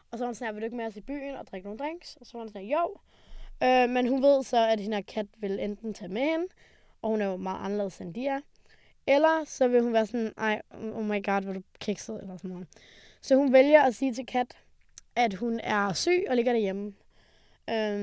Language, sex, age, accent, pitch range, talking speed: Danish, female, 20-39, native, 200-245 Hz, 250 wpm